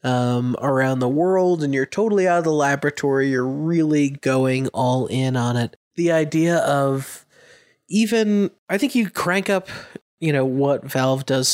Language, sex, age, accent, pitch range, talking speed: English, male, 30-49, American, 120-145 Hz, 165 wpm